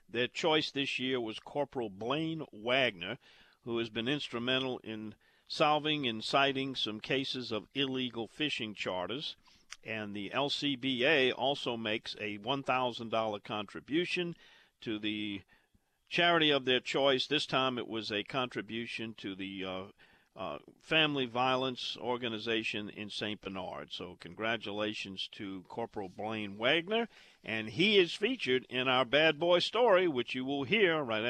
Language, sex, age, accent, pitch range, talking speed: English, male, 50-69, American, 115-160 Hz, 140 wpm